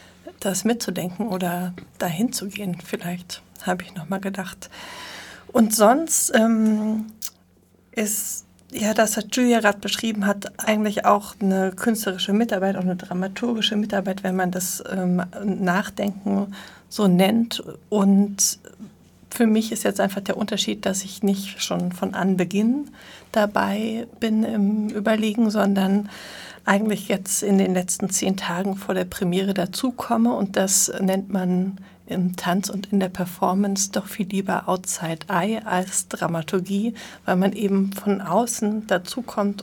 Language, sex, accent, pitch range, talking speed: German, female, German, 185-215 Hz, 140 wpm